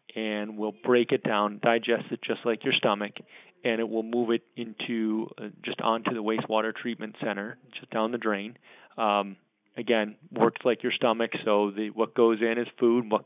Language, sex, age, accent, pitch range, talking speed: English, male, 30-49, American, 105-120 Hz, 190 wpm